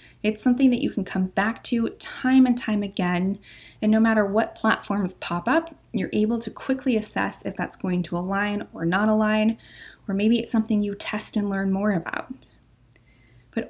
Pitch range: 175-225 Hz